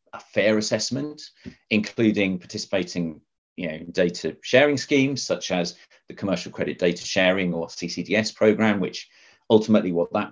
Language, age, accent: English, 30-49, British